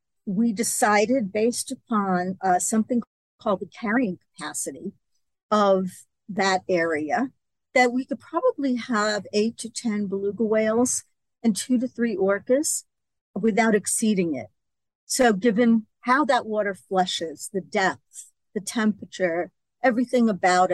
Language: English